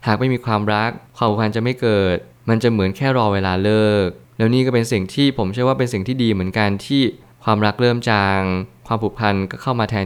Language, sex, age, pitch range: Thai, male, 20-39, 100-120 Hz